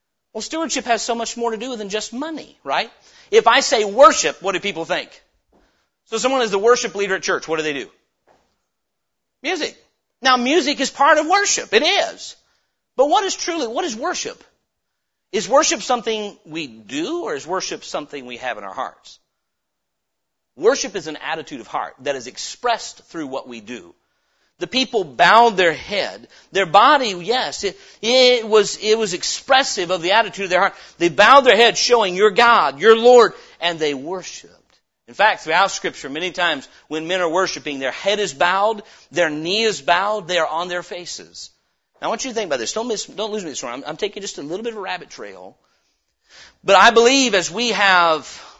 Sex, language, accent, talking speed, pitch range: male, English, American, 200 wpm, 185-265 Hz